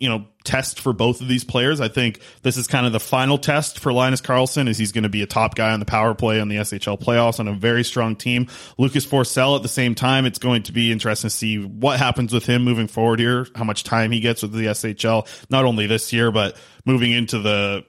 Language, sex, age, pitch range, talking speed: English, male, 20-39, 110-130 Hz, 260 wpm